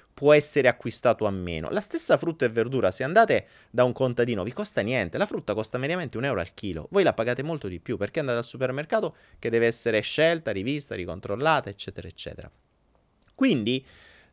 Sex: male